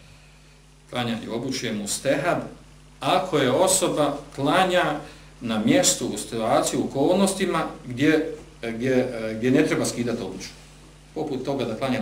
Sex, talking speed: male, 130 wpm